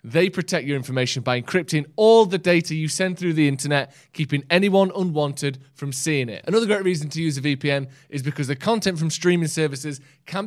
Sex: male